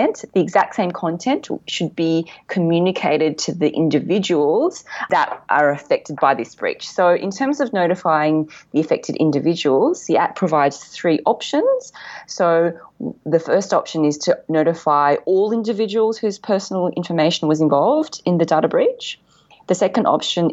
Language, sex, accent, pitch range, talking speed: English, female, Australian, 150-180 Hz, 145 wpm